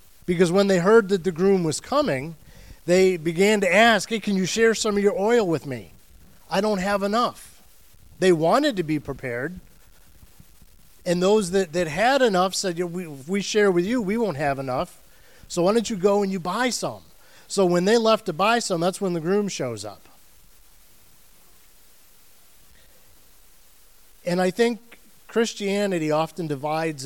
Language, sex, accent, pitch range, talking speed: English, male, American, 125-195 Hz, 170 wpm